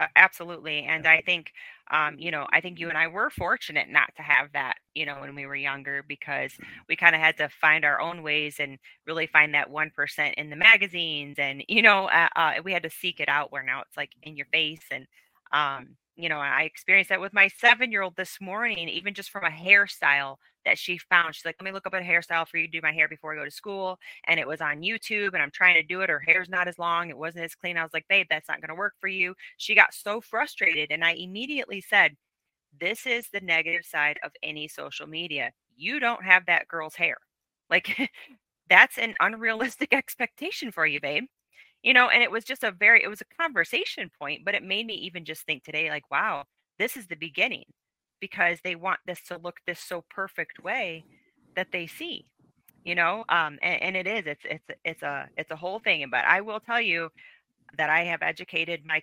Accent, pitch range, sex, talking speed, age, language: American, 155-195 Hz, female, 225 wpm, 20-39, English